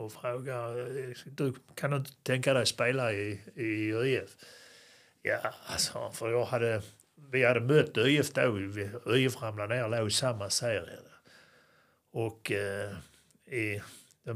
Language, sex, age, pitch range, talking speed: Swedish, male, 60-79, 110-145 Hz, 115 wpm